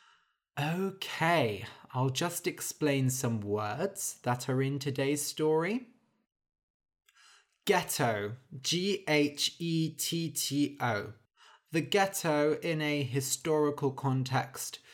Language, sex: English, male